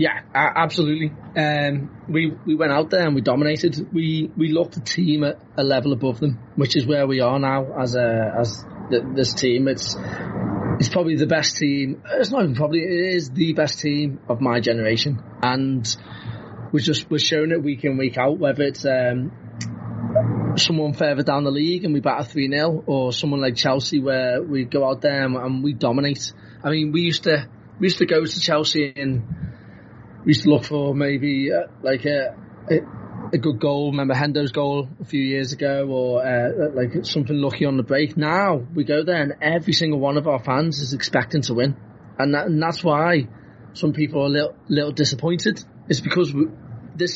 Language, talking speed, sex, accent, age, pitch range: English, 200 wpm, male, British, 30-49, 135-160 Hz